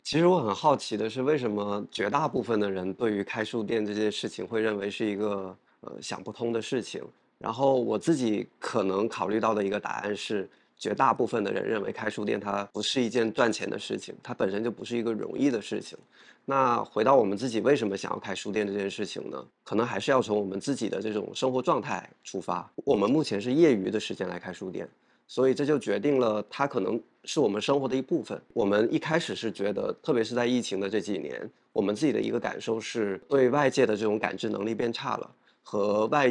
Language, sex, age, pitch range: Chinese, male, 20-39, 105-125 Hz